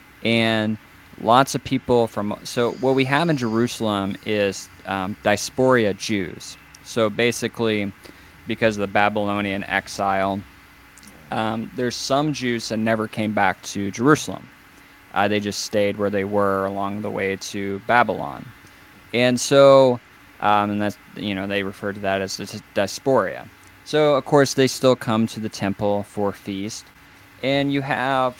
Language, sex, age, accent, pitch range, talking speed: English, male, 20-39, American, 95-120 Hz, 150 wpm